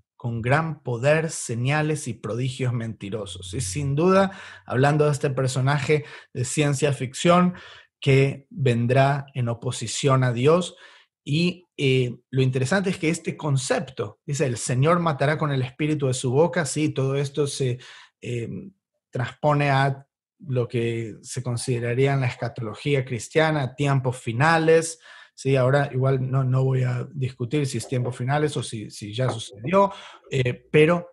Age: 30-49